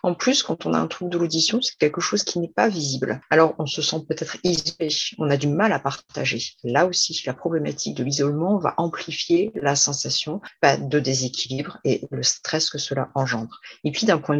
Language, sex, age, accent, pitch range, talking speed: French, female, 40-59, French, 140-175 Hz, 210 wpm